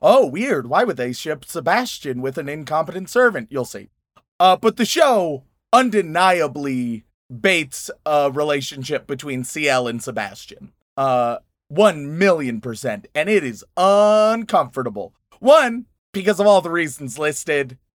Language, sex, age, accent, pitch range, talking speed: English, male, 30-49, American, 135-205 Hz, 135 wpm